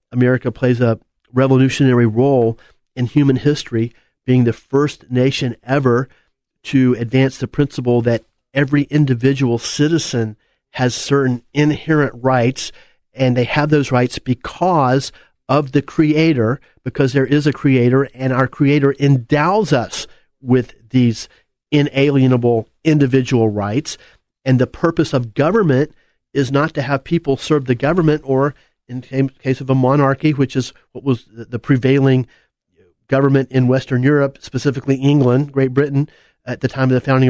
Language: English